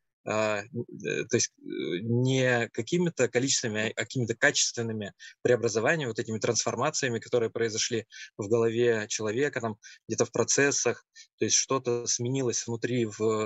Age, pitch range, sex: 20-39, 110-125 Hz, male